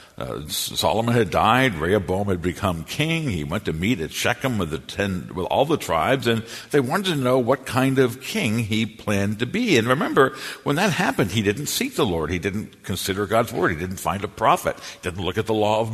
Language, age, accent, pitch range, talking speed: English, 60-79, American, 90-120 Hz, 230 wpm